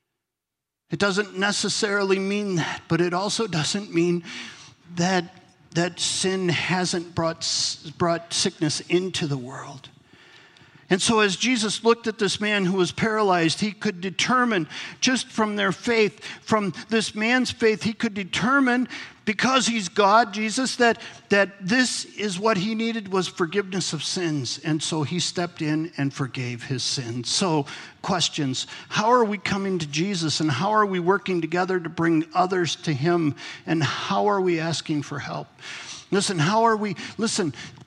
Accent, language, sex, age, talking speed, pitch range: American, English, male, 50-69, 160 wpm, 165-215 Hz